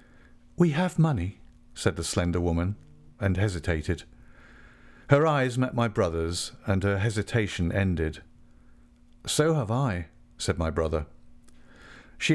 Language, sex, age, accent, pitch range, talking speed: English, male, 50-69, British, 85-125 Hz, 120 wpm